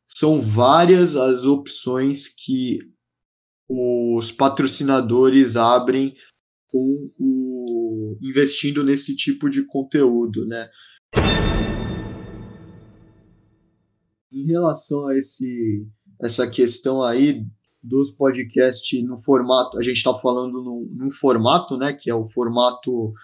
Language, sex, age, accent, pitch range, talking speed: Portuguese, male, 20-39, Brazilian, 120-145 Hz, 100 wpm